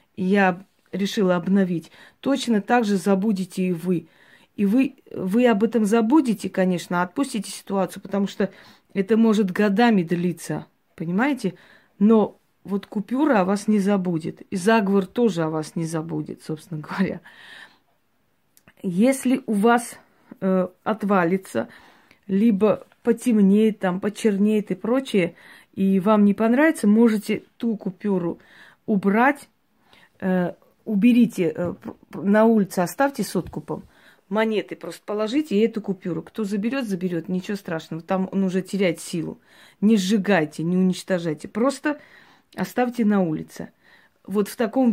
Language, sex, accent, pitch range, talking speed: Russian, female, native, 185-225 Hz, 125 wpm